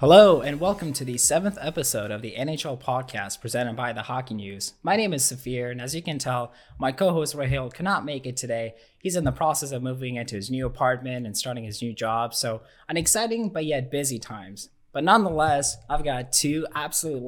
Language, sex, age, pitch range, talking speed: English, male, 20-39, 120-145 Hz, 210 wpm